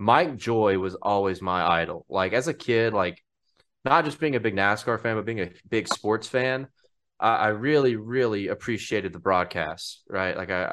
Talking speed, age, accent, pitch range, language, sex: 190 wpm, 20-39, American, 90-110 Hz, English, male